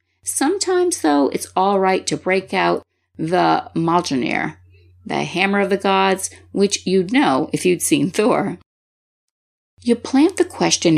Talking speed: 140 wpm